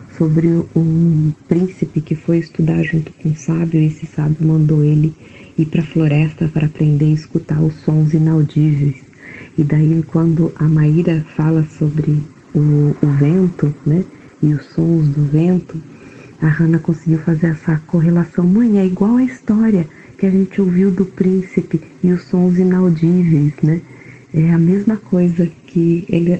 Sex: female